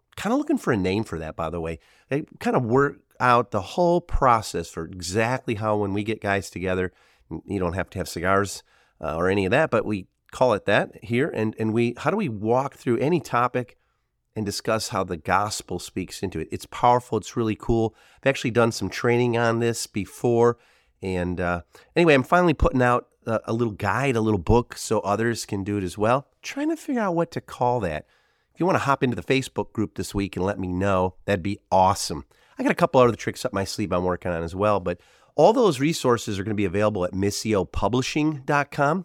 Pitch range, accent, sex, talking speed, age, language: 100-130 Hz, American, male, 225 wpm, 40-59, English